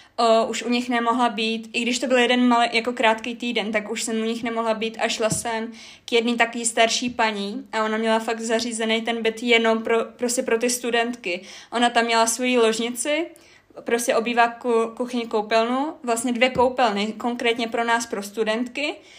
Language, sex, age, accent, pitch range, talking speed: Czech, female, 20-39, native, 225-245 Hz, 190 wpm